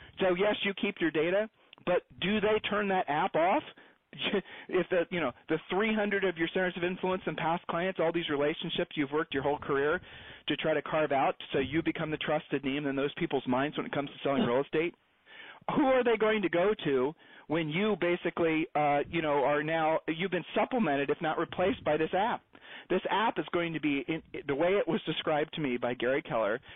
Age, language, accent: 40-59, English, American